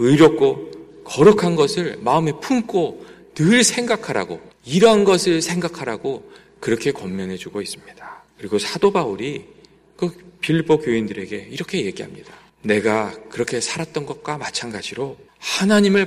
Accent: native